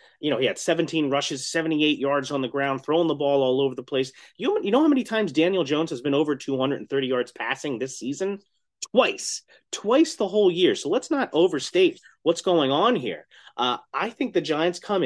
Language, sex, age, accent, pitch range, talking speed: English, male, 30-49, American, 125-175 Hz, 210 wpm